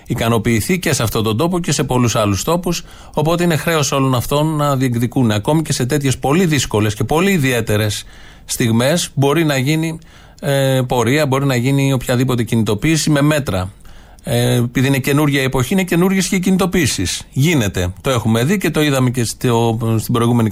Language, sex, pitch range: Greek, male, 120-155 Hz